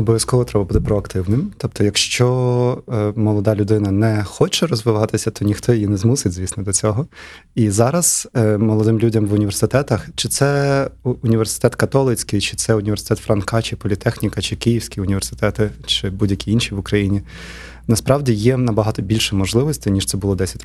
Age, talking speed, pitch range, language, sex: 20-39, 155 wpm, 100-120 Hz, Ukrainian, male